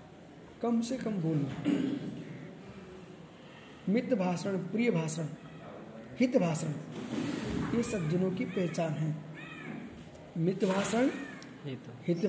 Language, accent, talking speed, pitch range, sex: Hindi, native, 90 wpm, 185-235 Hz, male